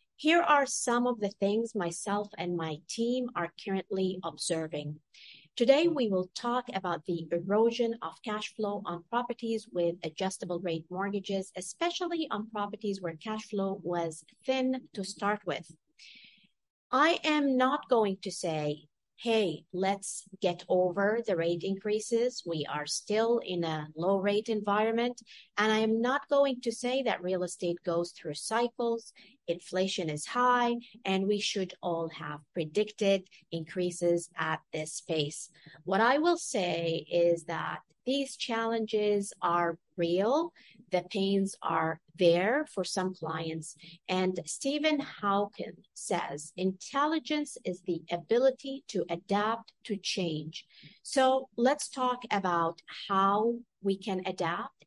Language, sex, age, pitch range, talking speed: English, female, 50-69, 170-230 Hz, 135 wpm